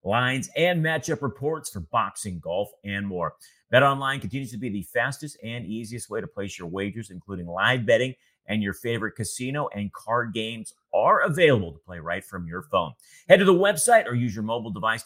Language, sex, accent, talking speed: English, male, American, 200 wpm